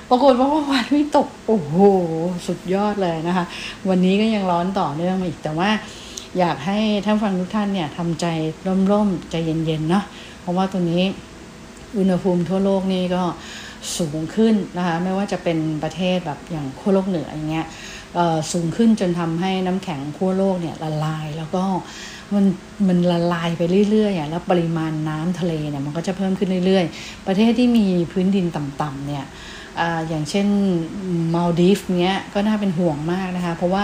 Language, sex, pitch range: English, female, 165-195 Hz